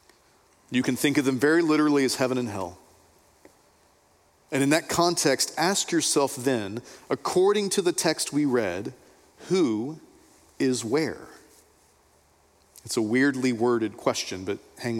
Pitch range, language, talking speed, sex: 105-155 Hz, English, 135 wpm, male